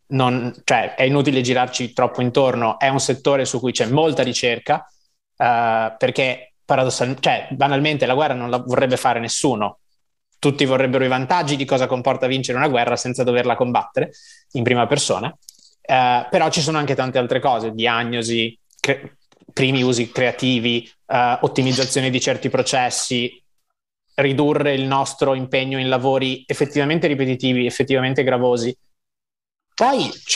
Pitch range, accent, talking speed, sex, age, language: 120-135 Hz, native, 140 wpm, male, 20-39, Italian